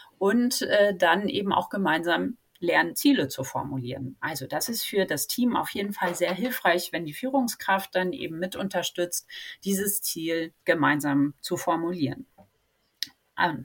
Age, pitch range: 30-49, 150-185 Hz